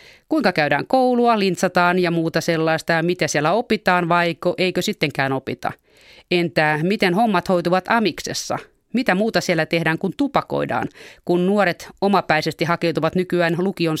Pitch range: 155-190 Hz